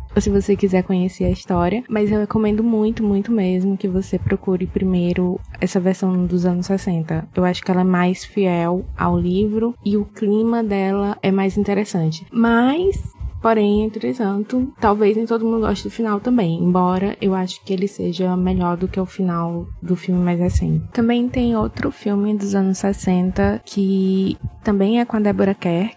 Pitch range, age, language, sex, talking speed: 185-210 Hz, 20-39, Portuguese, female, 180 wpm